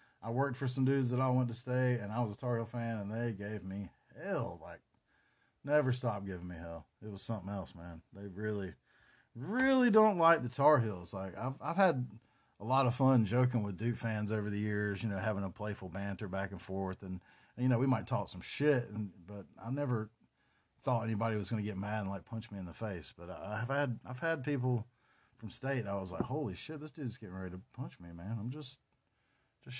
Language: English